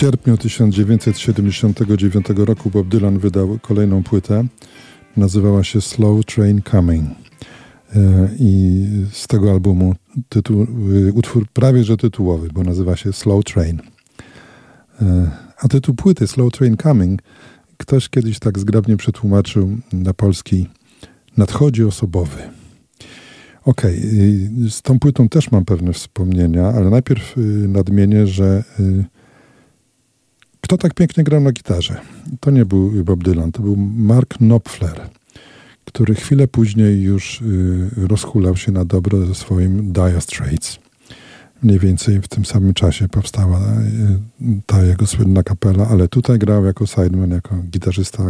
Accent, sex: native, male